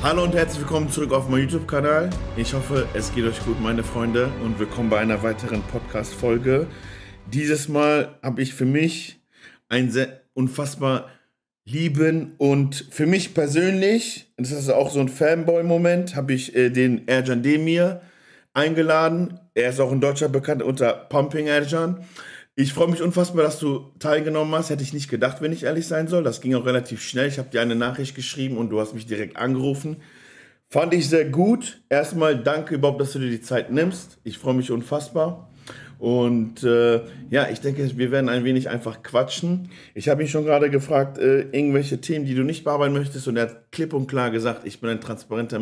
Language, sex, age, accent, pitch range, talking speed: German, male, 40-59, German, 120-155 Hz, 190 wpm